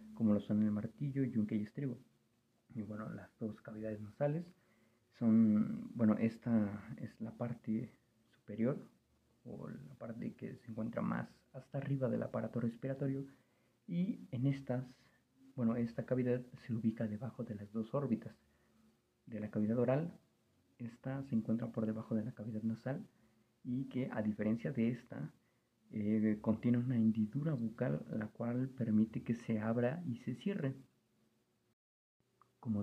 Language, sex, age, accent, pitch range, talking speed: Spanish, male, 40-59, Mexican, 110-135 Hz, 145 wpm